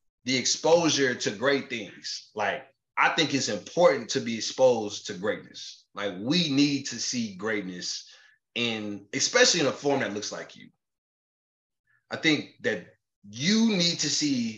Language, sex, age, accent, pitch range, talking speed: English, male, 20-39, American, 115-155 Hz, 150 wpm